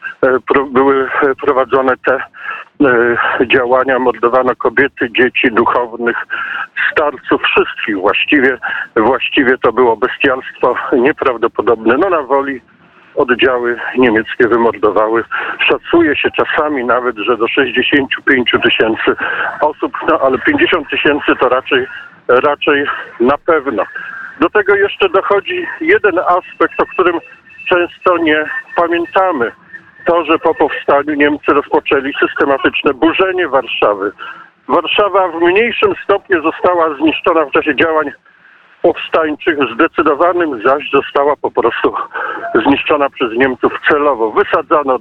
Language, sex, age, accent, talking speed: Polish, male, 50-69, native, 105 wpm